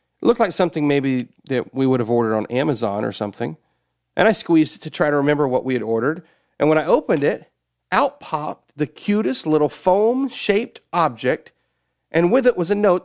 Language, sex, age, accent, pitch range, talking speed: English, male, 40-59, American, 135-225 Hz, 200 wpm